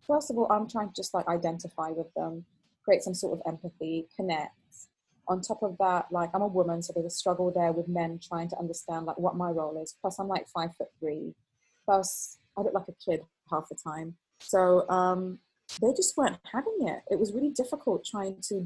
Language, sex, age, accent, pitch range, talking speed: English, female, 20-39, British, 170-190 Hz, 220 wpm